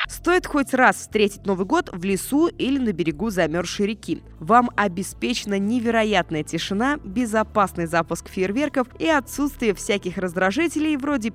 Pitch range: 195-270 Hz